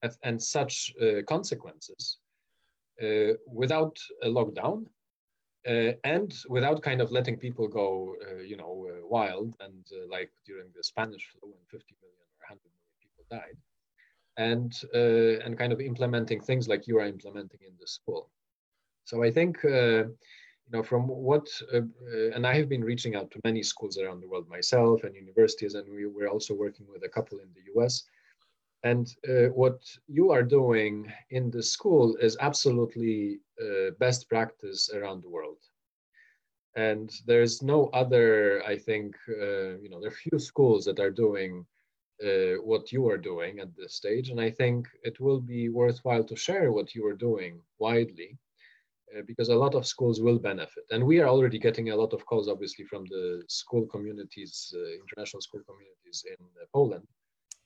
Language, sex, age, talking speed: English, male, 40-59, 175 wpm